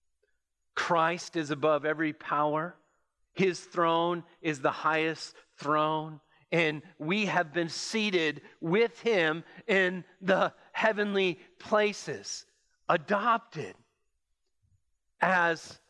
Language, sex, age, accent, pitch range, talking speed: English, male, 40-59, American, 160-215 Hz, 90 wpm